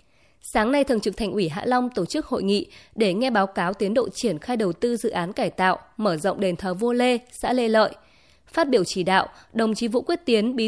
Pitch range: 195-255 Hz